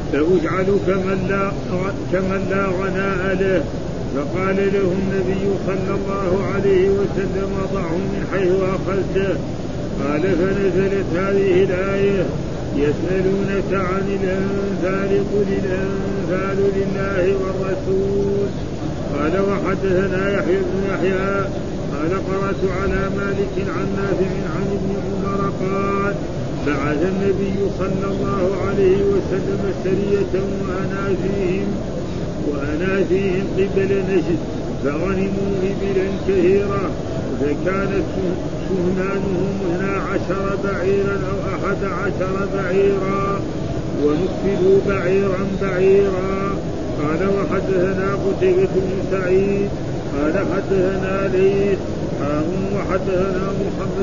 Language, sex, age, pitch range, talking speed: Arabic, male, 50-69, 180-195 Hz, 90 wpm